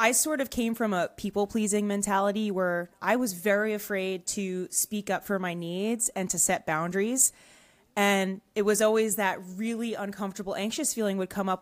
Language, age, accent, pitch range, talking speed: English, 20-39, American, 185-215 Hz, 180 wpm